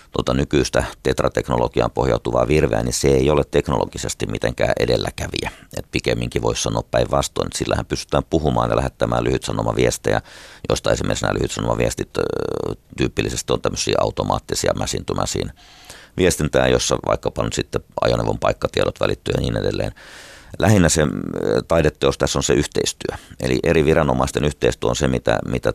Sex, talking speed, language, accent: male, 135 wpm, Finnish, native